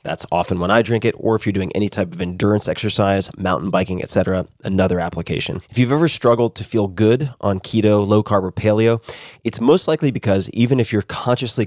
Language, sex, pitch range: English, male, 95-115 Hz